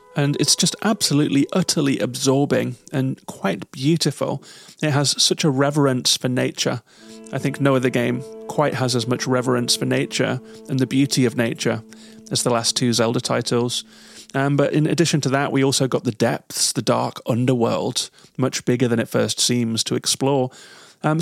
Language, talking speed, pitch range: English, 175 wpm, 125-145 Hz